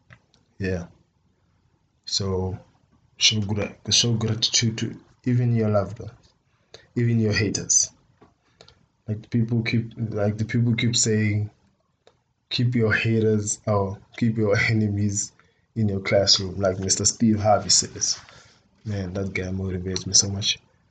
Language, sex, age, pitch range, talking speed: English, male, 20-39, 100-120 Hz, 130 wpm